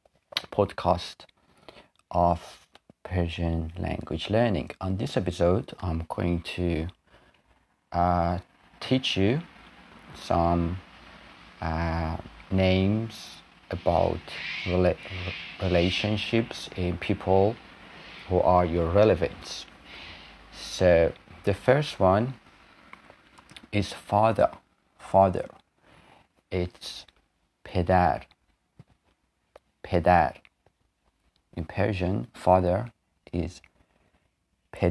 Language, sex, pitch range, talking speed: Persian, male, 85-95 Hz, 70 wpm